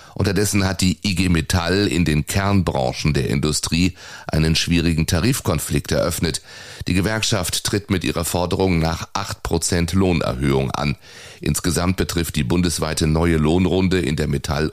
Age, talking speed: 30-49, 140 wpm